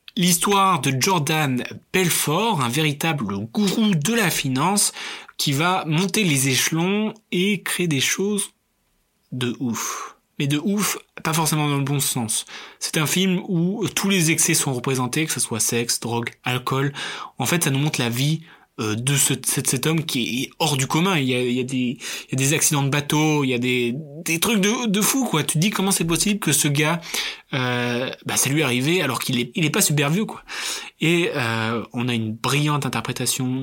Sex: male